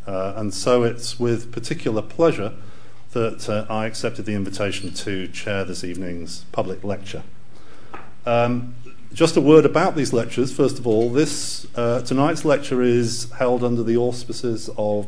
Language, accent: English, British